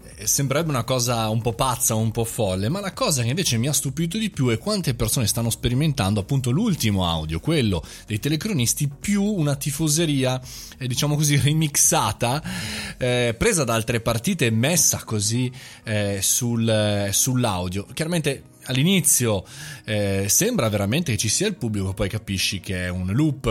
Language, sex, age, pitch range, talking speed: Italian, male, 20-39, 105-145 Hz, 160 wpm